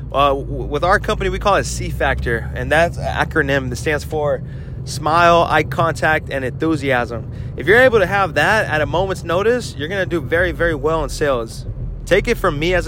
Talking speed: 205 wpm